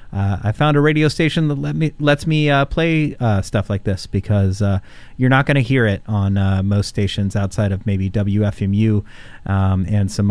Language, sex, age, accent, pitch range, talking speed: English, male, 30-49, American, 100-115 Hz, 210 wpm